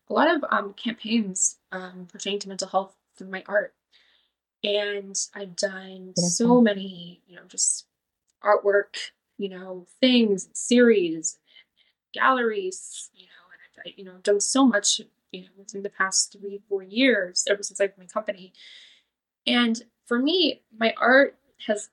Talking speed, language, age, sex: 155 wpm, English, 10-29, female